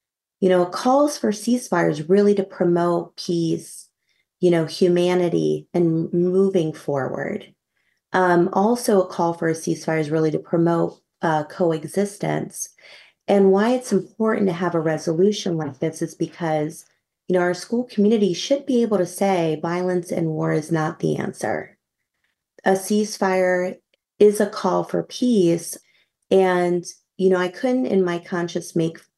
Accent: American